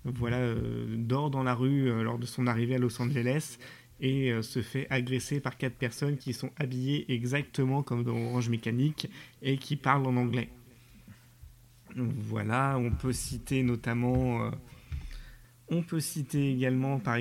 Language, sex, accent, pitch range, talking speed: French, male, French, 120-140 Hz, 160 wpm